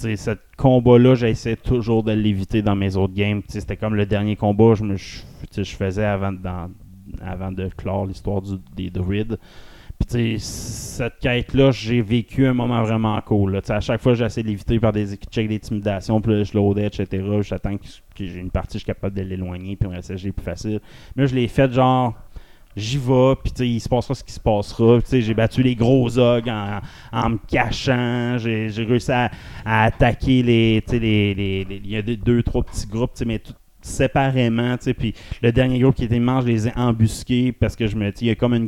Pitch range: 105-120 Hz